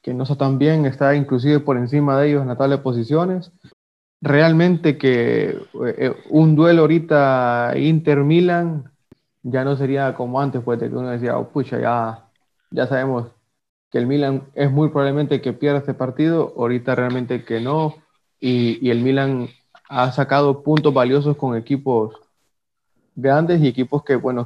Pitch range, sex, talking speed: 120-145 Hz, male, 160 wpm